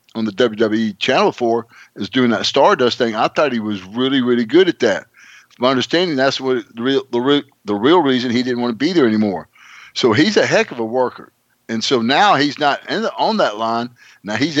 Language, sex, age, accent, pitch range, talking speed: English, male, 60-79, American, 110-135 Hz, 240 wpm